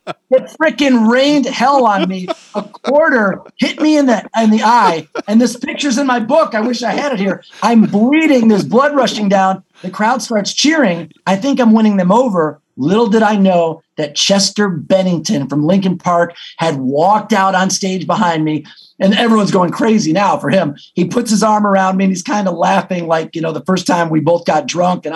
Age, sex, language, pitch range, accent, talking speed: 40-59, male, English, 180-230 Hz, American, 210 wpm